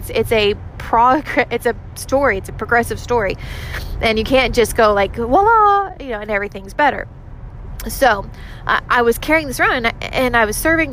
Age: 20-39